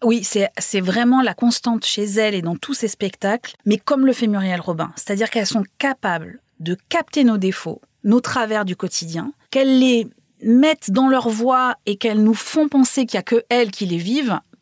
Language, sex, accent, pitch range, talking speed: French, female, French, 190-240 Hz, 205 wpm